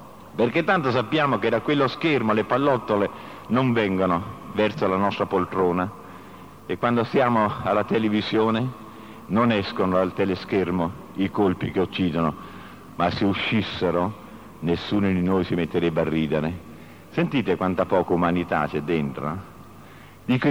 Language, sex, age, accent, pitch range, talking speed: Italian, male, 50-69, native, 95-125 Hz, 130 wpm